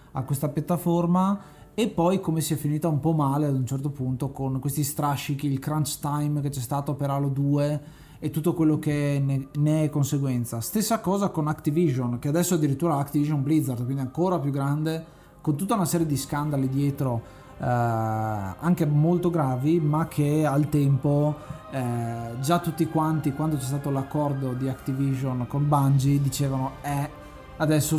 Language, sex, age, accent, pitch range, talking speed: Italian, male, 20-39, native, 135-155 Hz, 165 wpm